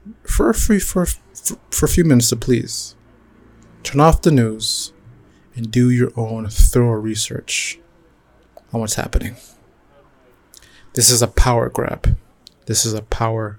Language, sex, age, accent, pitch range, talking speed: English, male, 30-49, American, 110-120 Hz, 150 wpm